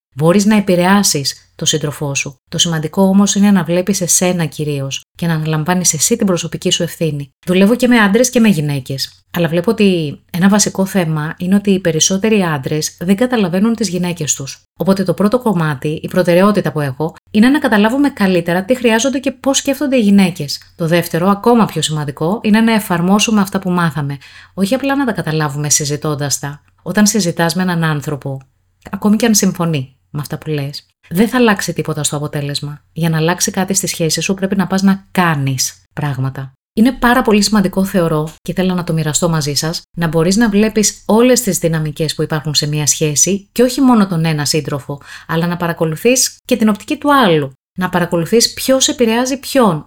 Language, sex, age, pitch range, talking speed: Greek, female, 30-49, 155-215 Hz, 190 wpm